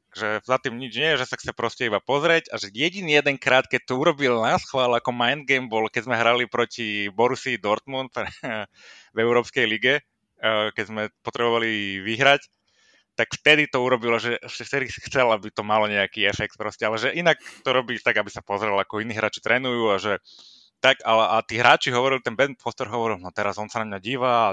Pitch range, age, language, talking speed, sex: 105-130 Hz, 20-39, Slovak, 200 wpm, male